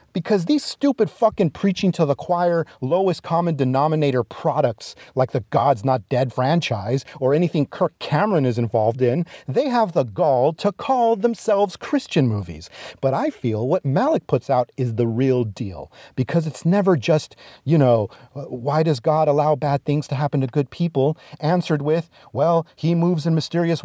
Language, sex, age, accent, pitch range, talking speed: English, male, 40-59, American, 140-215 Hz, 175 wpm